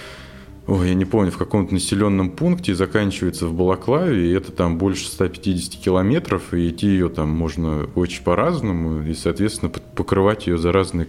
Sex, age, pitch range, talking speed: male, 20-39, 80-95 Hz, 160 wpm